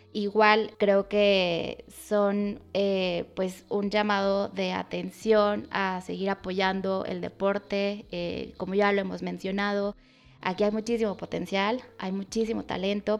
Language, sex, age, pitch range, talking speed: Spanish, female, 20-39, 185-210 Hz, 125 wpm